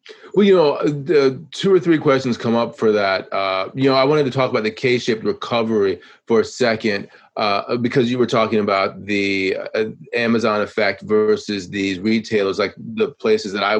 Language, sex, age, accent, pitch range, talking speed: English, male, 30-49, American, 110-135 Hz, 185 wpm